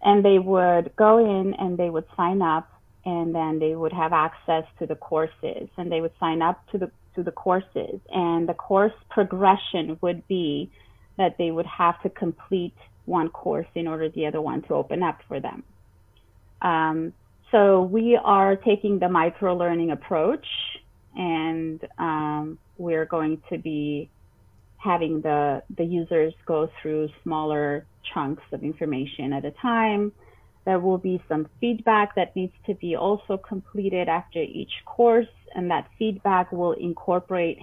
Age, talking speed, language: 30-49, 160 wpm, English